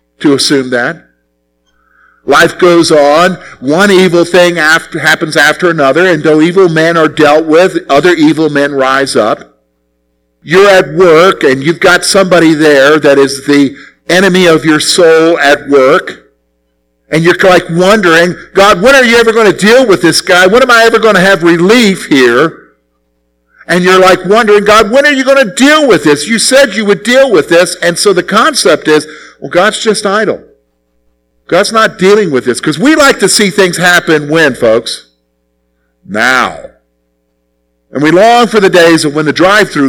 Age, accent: 50-69, American